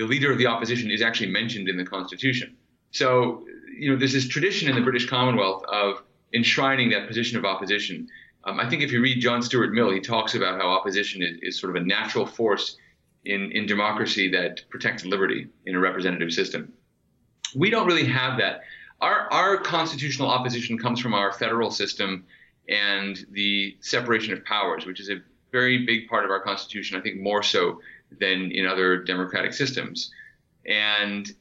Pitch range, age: 95-125 Hz, 30-49